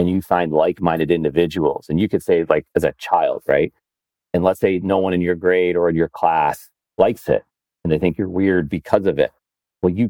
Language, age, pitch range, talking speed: English, 40-59, 80-100 Hz, 225 wpm